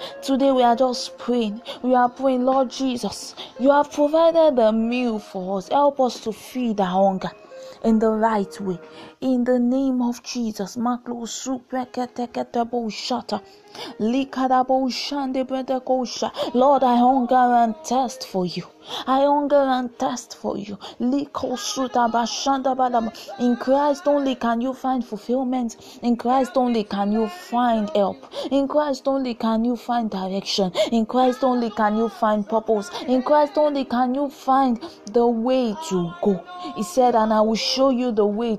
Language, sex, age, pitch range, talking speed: English, female, 20-39, 225-265 Hz, 145 wpm